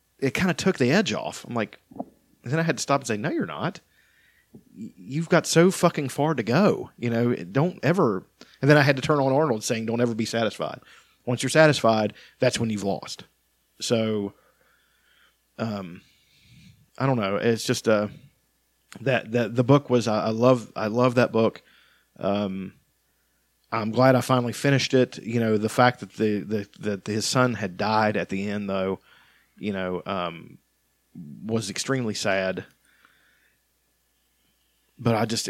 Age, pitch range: 40-59, 105-130 Hz